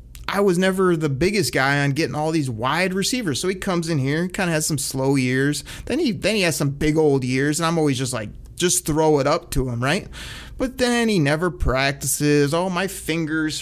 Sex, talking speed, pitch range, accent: male, 225 wpm, 140-180 Hz, American